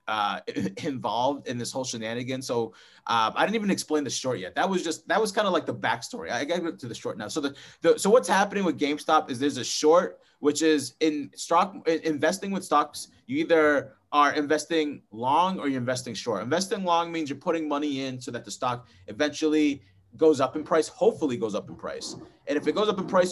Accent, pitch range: American, 130-170 Hz